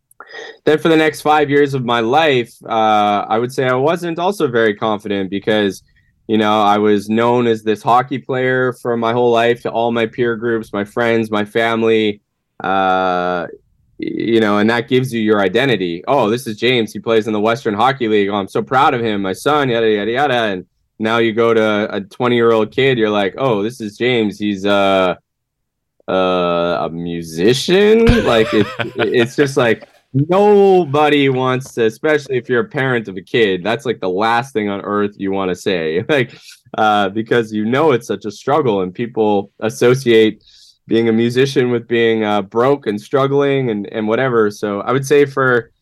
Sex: male